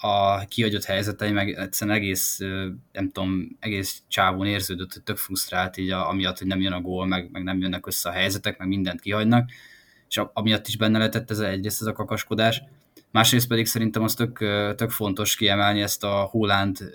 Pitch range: 95-110 Hz